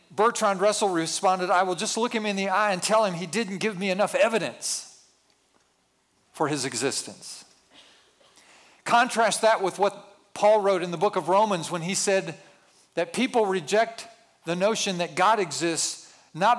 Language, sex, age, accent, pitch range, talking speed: English, male, 50-69, American, 180-215 Hz, 165 wpm